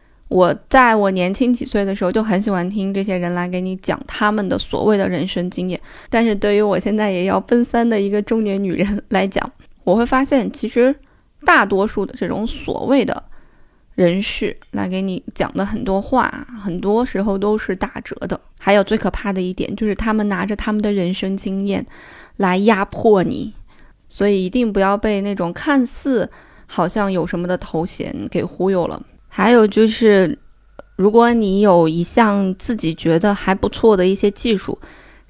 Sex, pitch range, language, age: female, 185-220 Hz, Chinese, 20-39